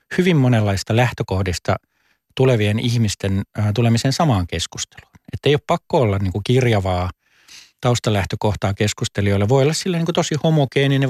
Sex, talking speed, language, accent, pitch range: male, 125 wpm, Finnish, native, 105-140 Hz